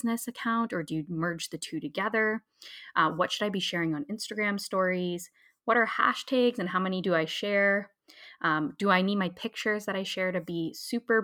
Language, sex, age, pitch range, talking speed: English, female, 20-39, 165-210 Hz, 205 wpm